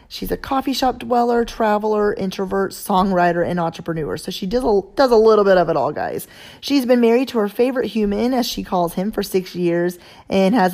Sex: female